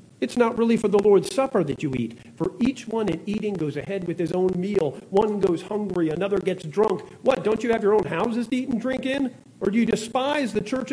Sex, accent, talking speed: male, American, 245 wpm